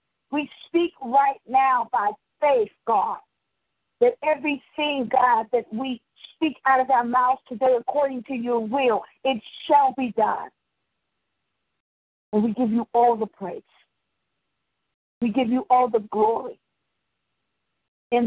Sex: female